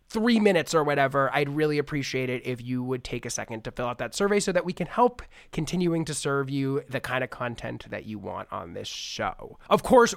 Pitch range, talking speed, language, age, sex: 130-175 Hz, 235 wpm, English, 20-39, male